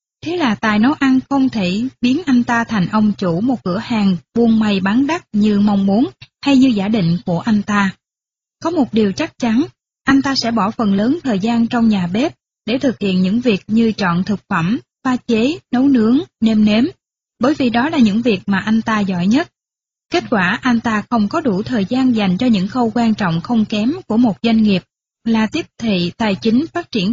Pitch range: 205-255 Hz